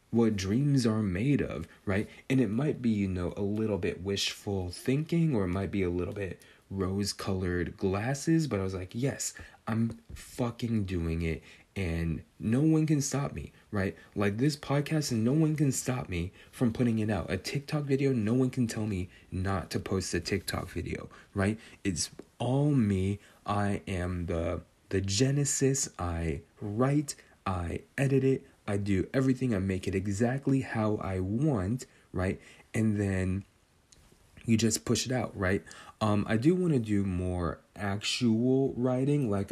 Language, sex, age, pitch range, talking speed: English, male, 30-49, 95-125 Hz, 170 wpm